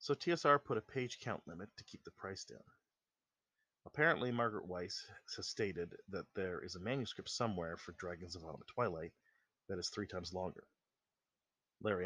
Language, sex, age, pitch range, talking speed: English, male, 30-49, 95-125 Hz, 170 wpm